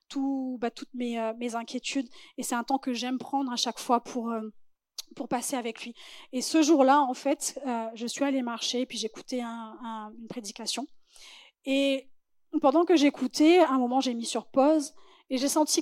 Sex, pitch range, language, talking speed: female, 245-285 Hz, French, 205 wpm